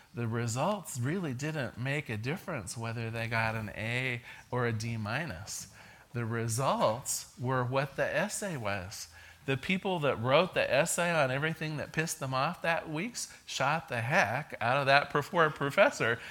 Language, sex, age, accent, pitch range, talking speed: English, male, 40-59, American, 120-170 Hz, 160 wpm